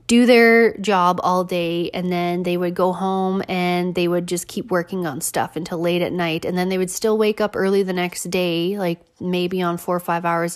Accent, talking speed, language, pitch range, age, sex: American, 235 wpm, English, 175-210 Hz, 20-39, female